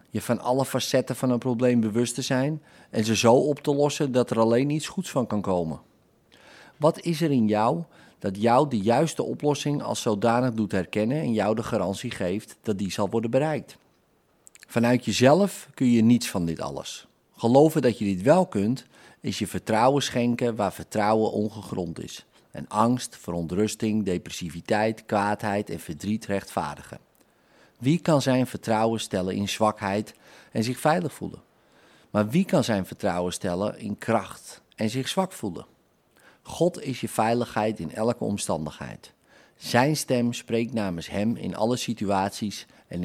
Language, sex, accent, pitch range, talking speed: Dutch, male, Dutch, 100-125 Hz, 165 wpm